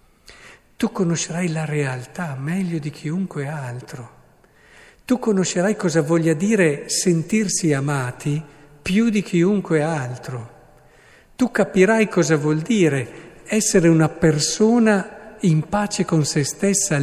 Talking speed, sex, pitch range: 115 wpm, male, 135-175 Hz